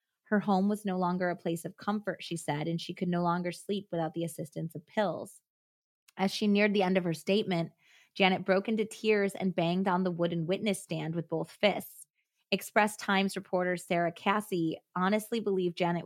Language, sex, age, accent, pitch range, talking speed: English, female, 20-39, American, 170-200 Hz, 195 wpm